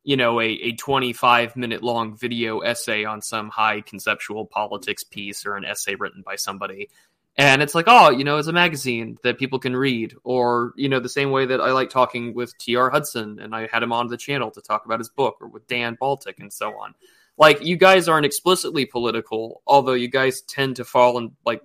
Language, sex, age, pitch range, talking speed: English, male, 20-39, 115-140 Hz, 220 wpm